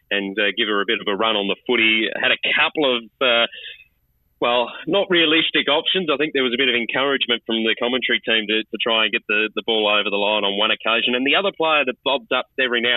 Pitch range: 110-135 Hz